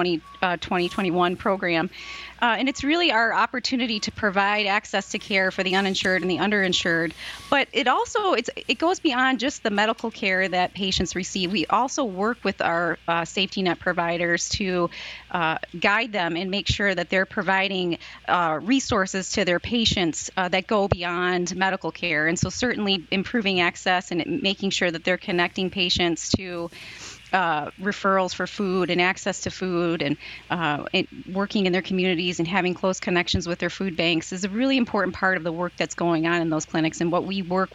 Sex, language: female, English